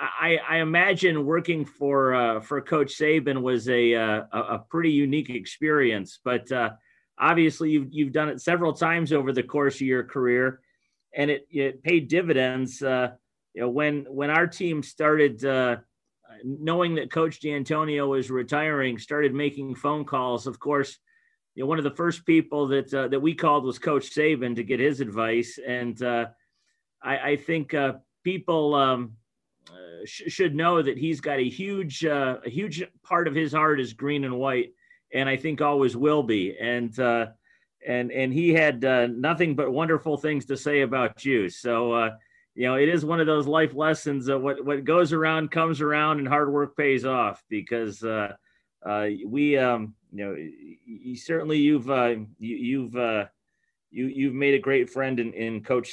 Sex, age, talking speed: male, 40-59, 180 wpm